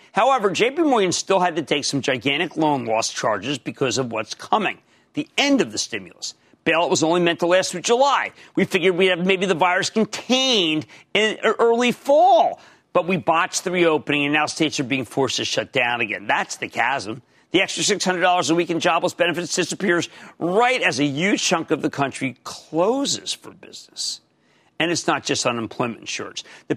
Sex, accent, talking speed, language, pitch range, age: male, American, 195 wpm, English, 150-215 Hz, 50-69